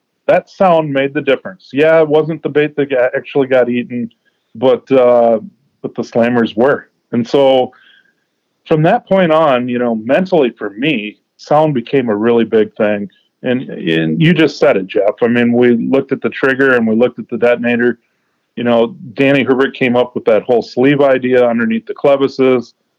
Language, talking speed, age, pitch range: English, 185 wpm, 40-59, 115-140 Hz